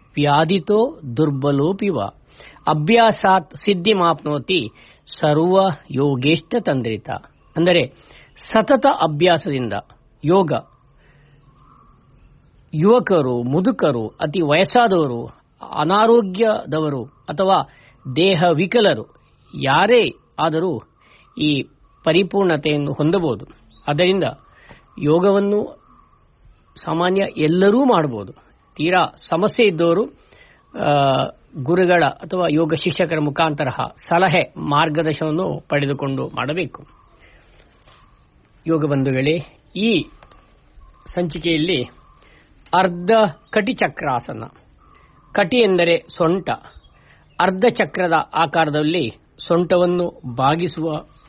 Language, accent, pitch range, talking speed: Kannada, native, 145-185 Hz, 65 wpm